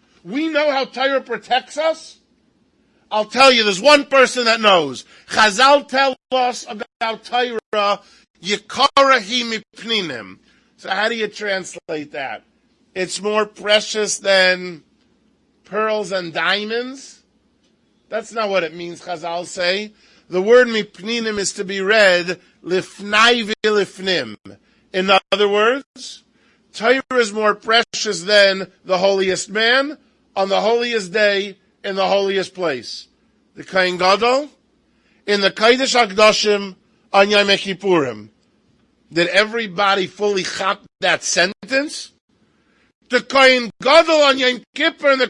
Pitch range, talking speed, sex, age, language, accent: 195-255 Hz, 125 wpm, male, 40-59, English, American